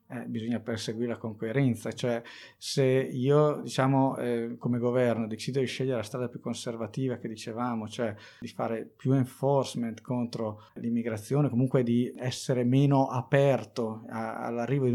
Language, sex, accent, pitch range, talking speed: Italian, male, native, 120-140 Hz, 145 wpm